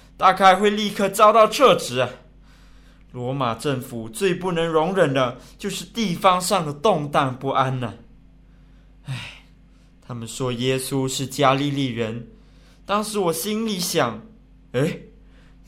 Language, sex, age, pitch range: Chinese, male, 20-39, 125-165 Hz